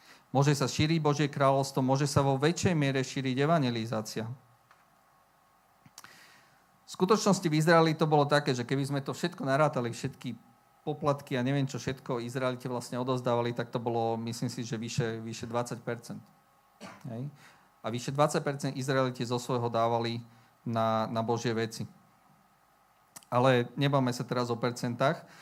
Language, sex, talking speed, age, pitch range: Slovak, male, 140 wpm, 40-59, 125-150 Hz